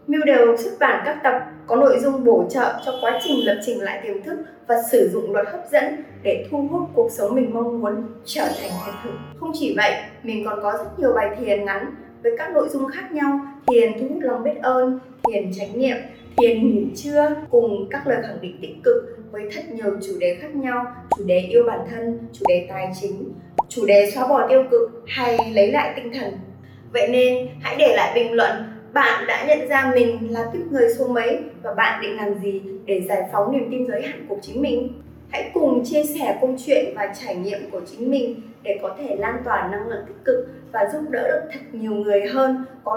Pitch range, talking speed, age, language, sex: 210-285 Hz, 225 wpm, 20-39, Vietnamese, female